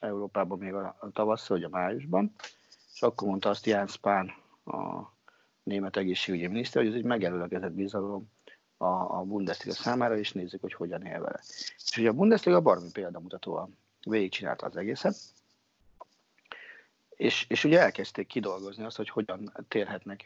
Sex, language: male, Hungarian